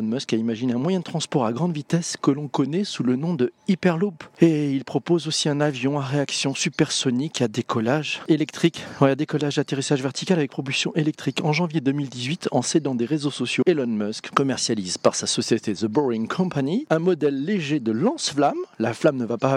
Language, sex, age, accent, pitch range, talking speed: French, male, 40-59, French, 125-170 Hz, 210 wpm